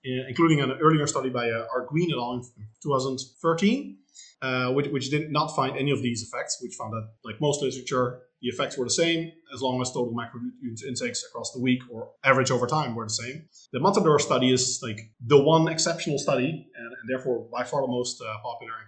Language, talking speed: English, 215 wpm